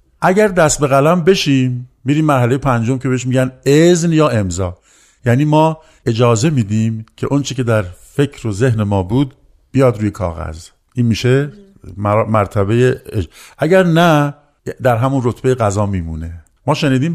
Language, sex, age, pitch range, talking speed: Persian, male, 50-69, 105-135 Hz, 155 wpm